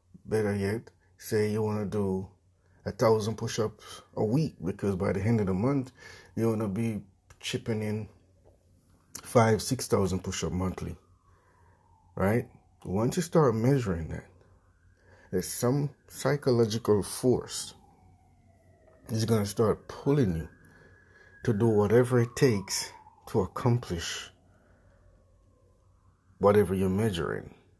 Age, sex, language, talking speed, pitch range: 60-79, male, English, 125 wpm, 90-110 Hz